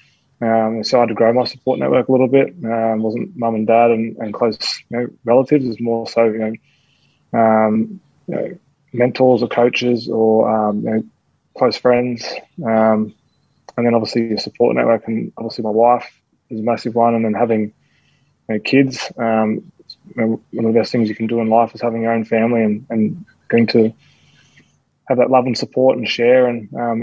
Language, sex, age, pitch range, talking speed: English, male, 20-39, 110-120 Hz, 205 wpm